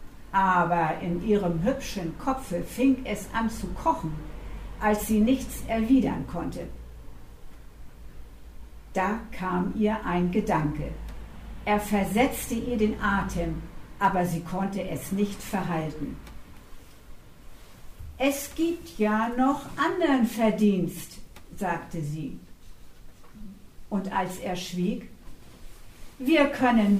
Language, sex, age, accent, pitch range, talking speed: German, female, 60-79, German, 170-220 Hz, 100 wpm